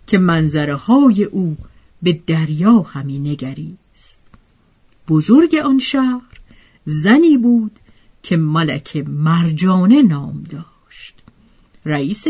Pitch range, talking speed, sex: 160-250 Hz, 90 wpm, female